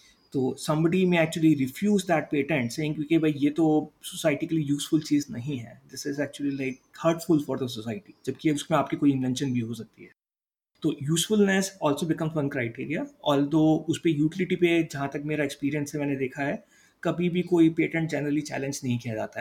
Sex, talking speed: male, 195 wpm